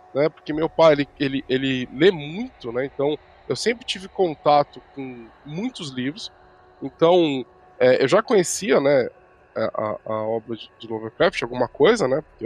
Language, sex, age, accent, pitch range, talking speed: Portuguese, male, 10-29, Brazilian, 130-210 Hz, 160 wpm